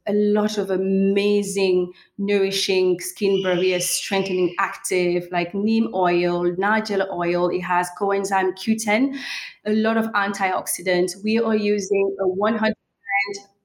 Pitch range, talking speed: 180-215 Hz, 120 wpm